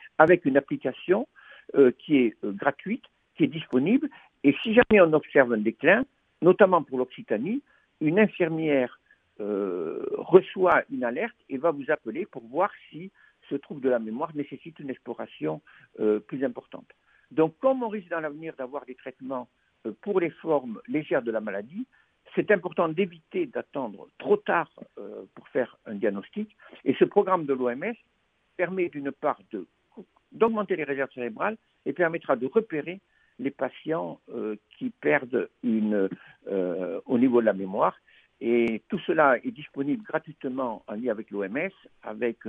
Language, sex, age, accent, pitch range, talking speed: French, male, 60-79, French, 130-215 Hz, 160 wpm